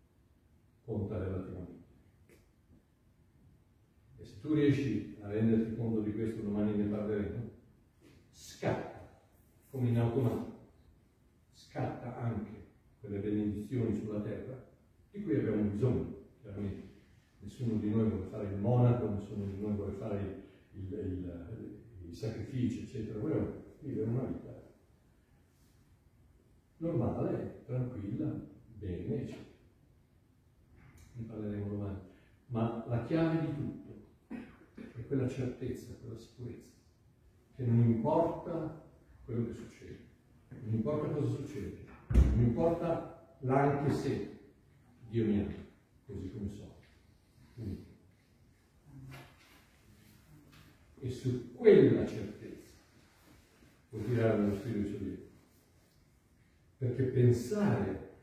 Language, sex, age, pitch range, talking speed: Italian, female, 40-59, 100-125 Hz, 100 wpm